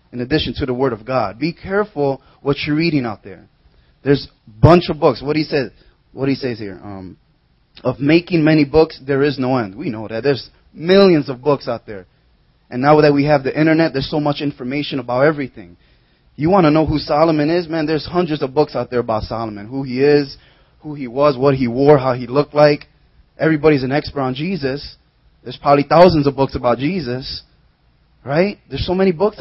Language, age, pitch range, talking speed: English, 20-39, 125-155 Hz, 210 wpm